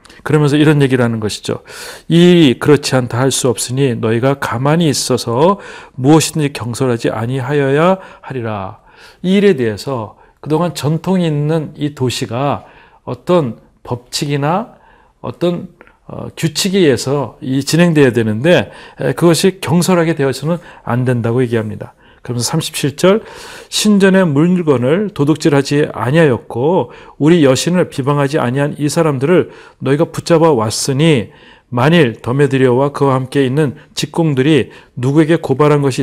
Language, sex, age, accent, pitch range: Korean, male, 40-59, native, 125-165 Hz